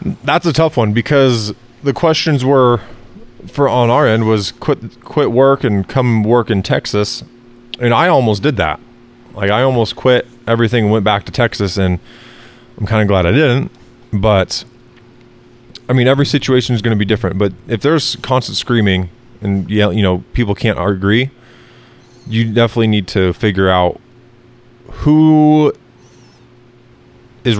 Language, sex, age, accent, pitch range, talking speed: English, male, 20-39, American, 100-120 Hz, 155 wpm